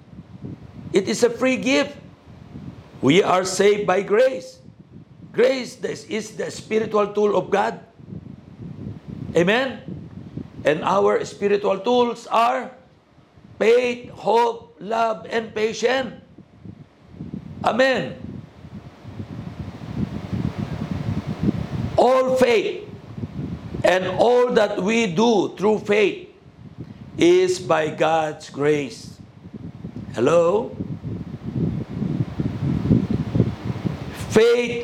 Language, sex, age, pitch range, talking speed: Filipino, male, 50-69, 175-245 Hz, 80 wpm